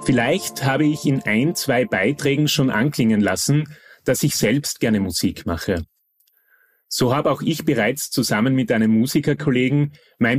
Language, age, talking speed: German, 30-49, 150 wpm